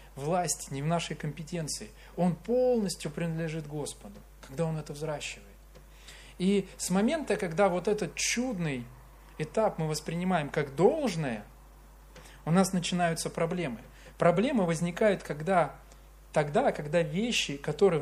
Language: Russian